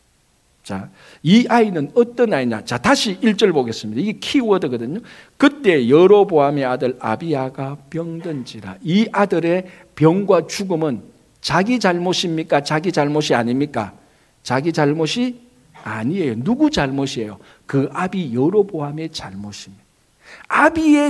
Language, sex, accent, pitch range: Korean, male, native, 135-225 Hz